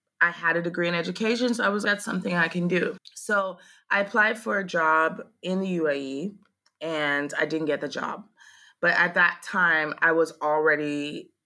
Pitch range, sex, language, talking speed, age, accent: 145-175 Hz, female, English, 190 wpm, 20-39, American